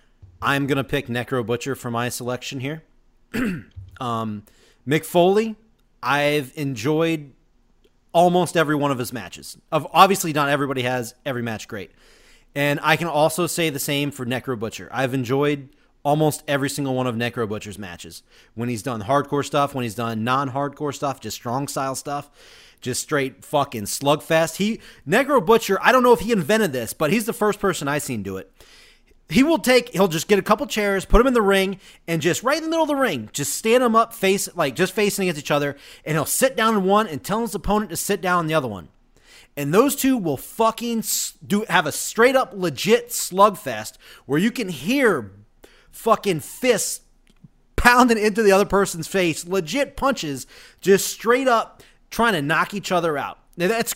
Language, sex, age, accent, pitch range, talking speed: English, male, 30-49, American, 130-205 Hz, 190 wpm